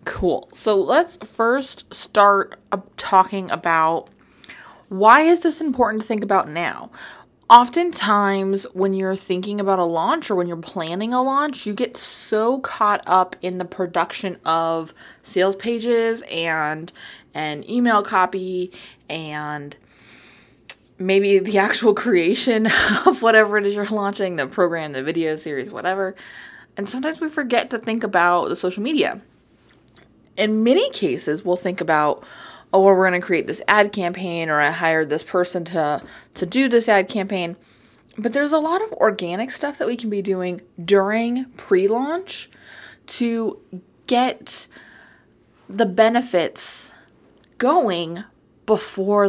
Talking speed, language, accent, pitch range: 140 wpm, English, American, 180-230 Hz